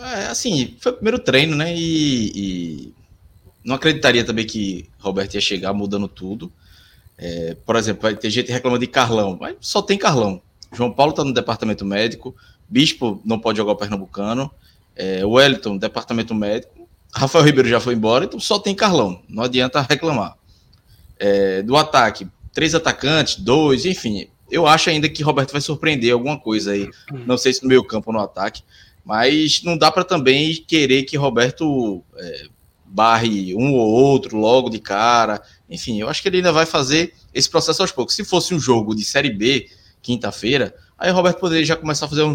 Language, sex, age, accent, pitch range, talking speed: Portuguese, male, 20-39, Brazilian, 105-150 Hz, 185 wpm